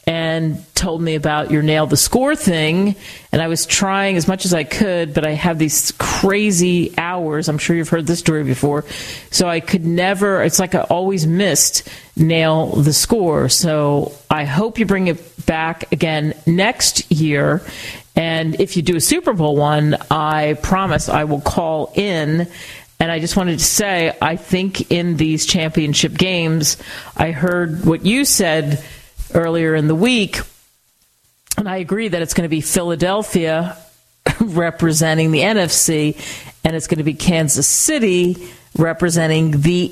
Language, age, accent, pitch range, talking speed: English, 40-59, American, 155-185 Hz, 165 wpm